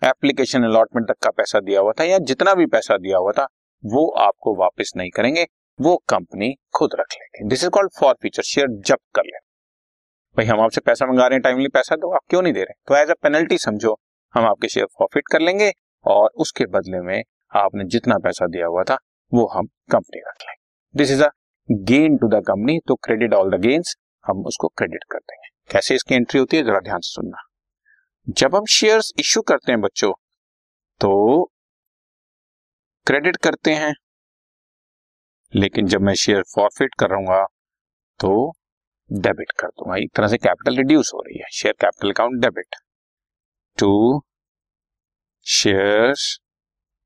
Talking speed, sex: 175 wpm, male